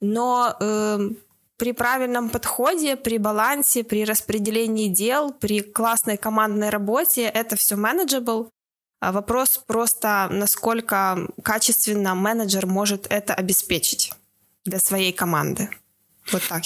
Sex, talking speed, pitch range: female, 110 wpm, 200-230 Hz